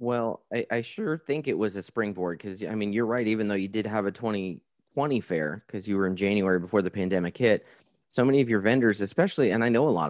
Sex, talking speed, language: male, 250 wpm, English